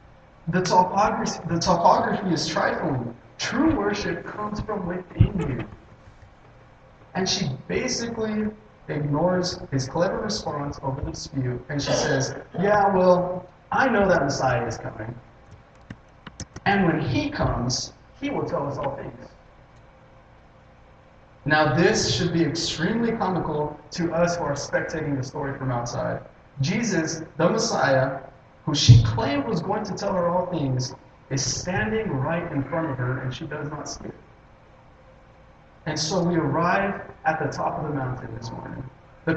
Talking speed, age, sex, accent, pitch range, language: 150 wpm, 30-49, male, American, 135-185 Hz, English